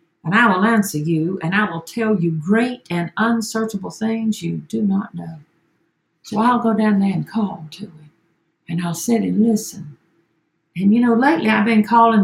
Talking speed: 190 wpm